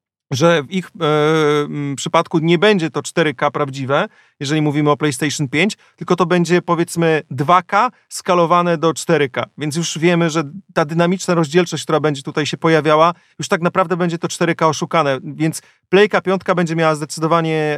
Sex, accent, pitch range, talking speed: male, native, 155-180 Hz, 170 wpm